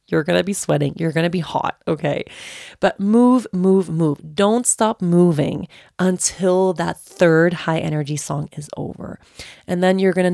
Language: English